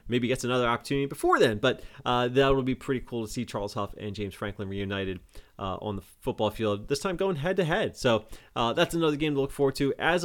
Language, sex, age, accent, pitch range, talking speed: English, male, 30-49, American, 110-150 Hz, 245 wpm